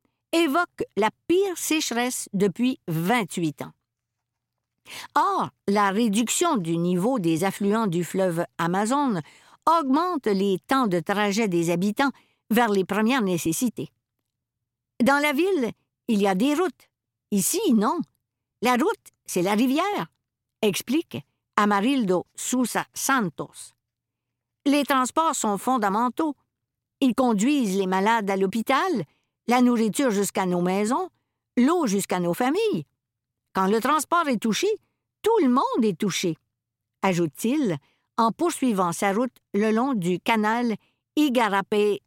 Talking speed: 130 wpm